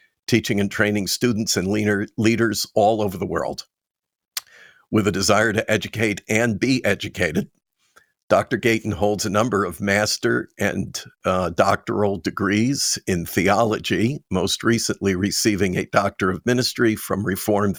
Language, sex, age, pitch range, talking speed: English, male, 50-69, 100-120 Hz, 135 wpm